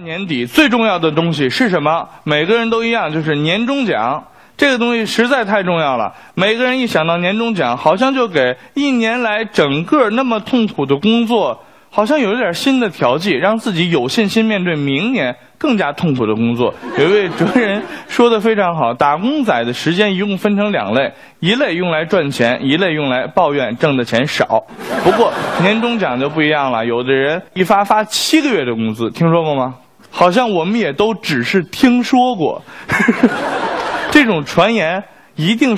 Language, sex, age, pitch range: Chinese, male, 20-39, 150-235 Hz